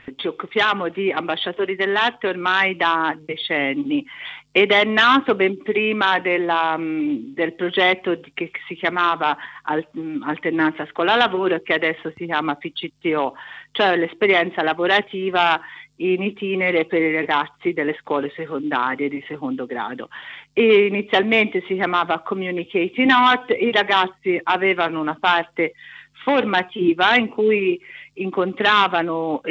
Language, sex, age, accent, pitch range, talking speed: Italian, female, 50-69, native, 160-210 Hz, 115 wpm